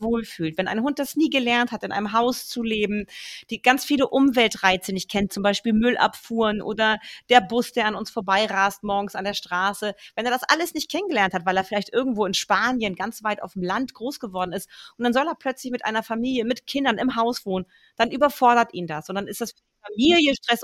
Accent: German